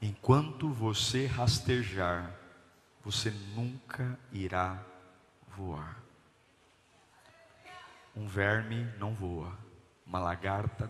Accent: Brazilian